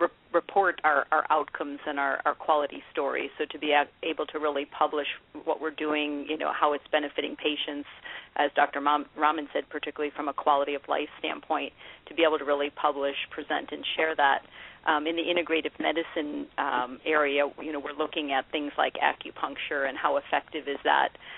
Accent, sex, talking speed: American, female, 185 wpm